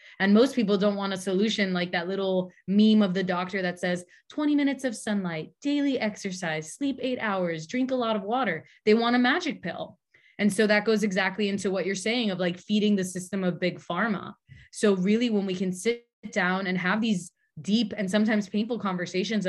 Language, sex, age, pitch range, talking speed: English, female, 20-39, 180-215 Hz, 205 wpm